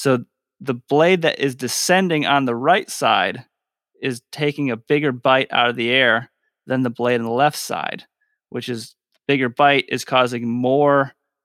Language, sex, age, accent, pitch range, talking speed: English, male, 30-49, American, 115-140 Hz, 175 wpm